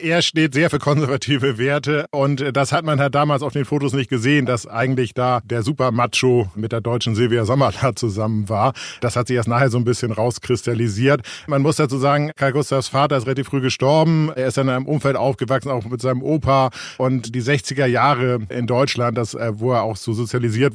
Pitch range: 120-135 Hz